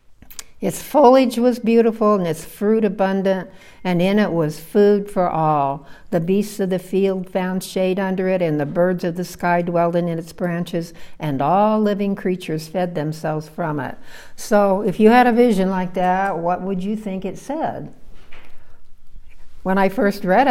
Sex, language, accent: female, English, American